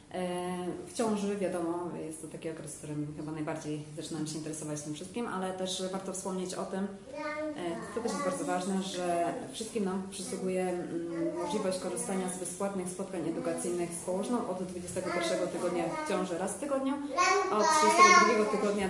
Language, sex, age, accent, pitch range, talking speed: Polish, female, 20-39, native, 170-215 Hz, 160 wpm